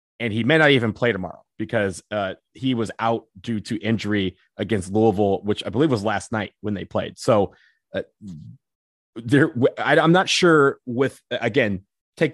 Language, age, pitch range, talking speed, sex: English, 30-49, 100-120 Hz, 165 wpm, male